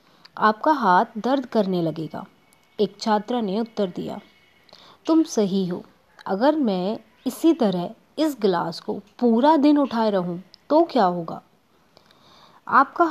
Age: 30-49